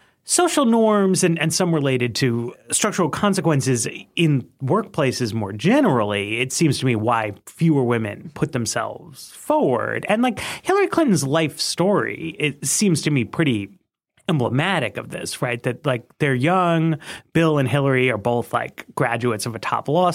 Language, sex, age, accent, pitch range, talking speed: English, male, 30-49, American, 125-175 Hz, 160 wpm